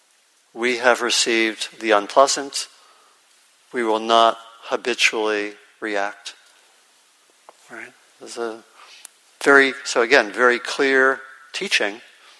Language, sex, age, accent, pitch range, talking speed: English, male, 50-69, American, 110-125 Hz, 95 wpm